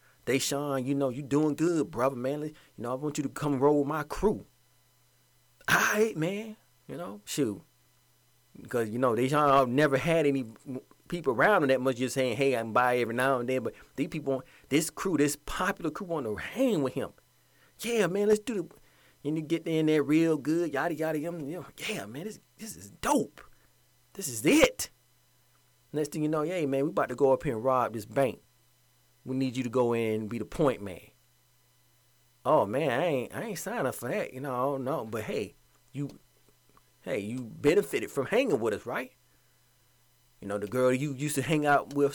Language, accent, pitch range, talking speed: English, American, 125-155 Hz, 210 wpm